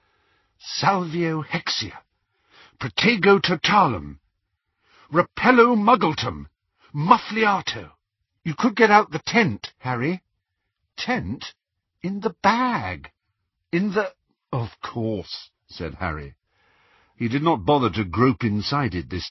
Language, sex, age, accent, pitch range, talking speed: English, male, 50-69, British, 95-160 Hz, 105 wpm